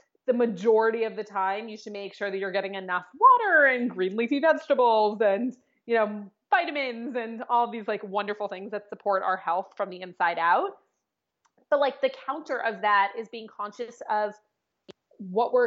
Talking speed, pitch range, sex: 190 wpm, 195-240 Hz, female